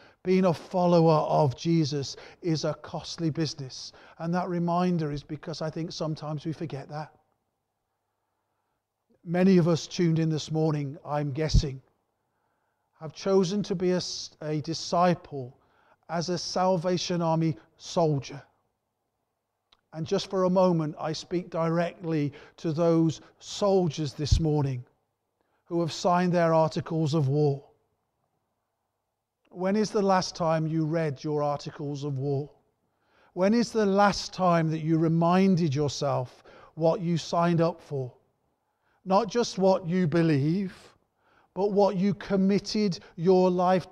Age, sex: 40-59, male